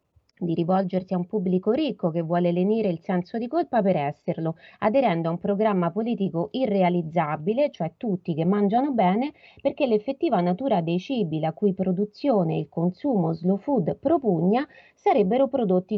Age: 30-49